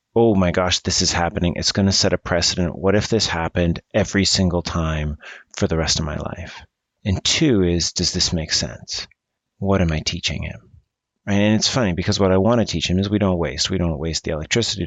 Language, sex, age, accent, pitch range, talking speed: English, male, 30-49, American, 80-105 Hz, 225 wpm